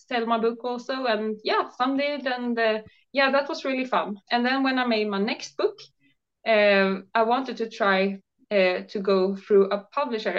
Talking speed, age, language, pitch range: 195 wpm, 20-39, English, 195-250 Hz